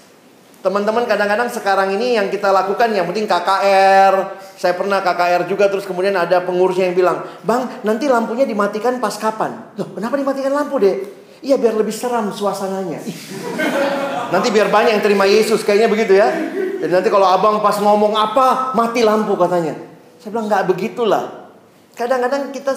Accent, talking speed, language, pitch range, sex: native, 160 wpm, Indonesian, 185-220 Hz, male